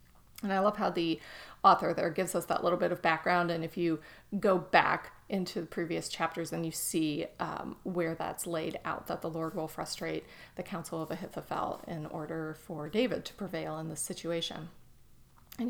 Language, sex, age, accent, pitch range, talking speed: English, female, 30-49, American, 170-215 Hz, 190 wpm